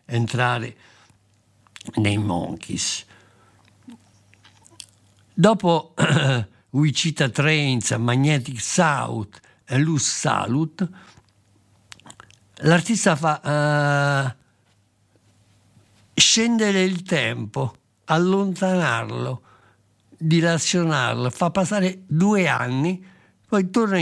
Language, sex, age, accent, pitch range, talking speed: Italian, male, 60-79, native, 110-165 Hz, 60 wpm